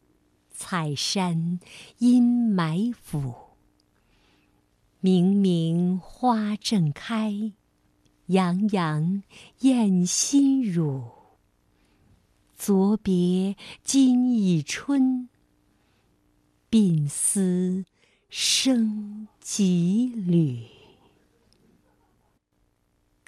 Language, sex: Chinese, female